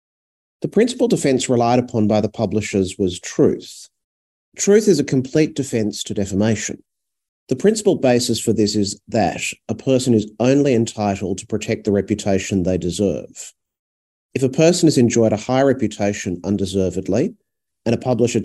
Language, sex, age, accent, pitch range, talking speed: English, male, 40-59, Australian, 95-120 Hz, 155 wpm